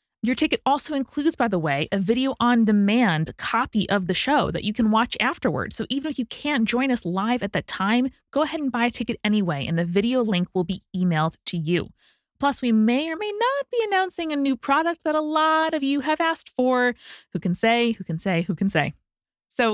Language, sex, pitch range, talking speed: English, female, 180-255 Hz, 230 wpm